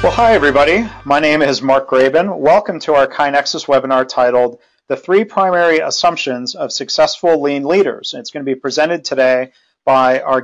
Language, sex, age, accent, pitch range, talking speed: English, male, 40-59, American, 135-170 Hz, 170 wpm